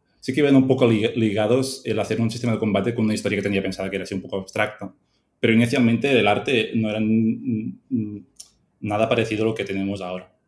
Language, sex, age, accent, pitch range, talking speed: Spanish, male, 20-39, Spanish, 100-115 Hz, 225 wpm